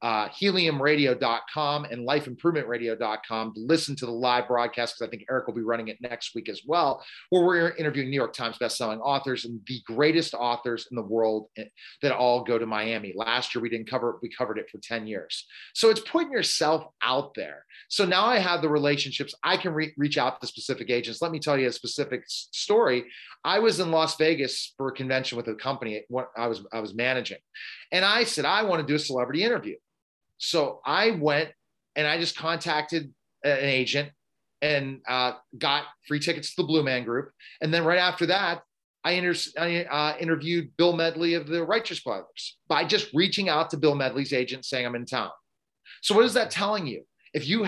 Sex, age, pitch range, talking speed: male, 30-49, 125-170 Hz, 200 wpm